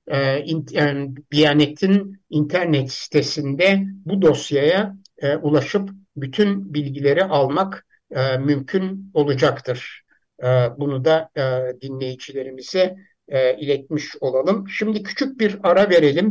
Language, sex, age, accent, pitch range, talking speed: Turkish, male, 60-79, native, 135-180 Hz, 75 wpm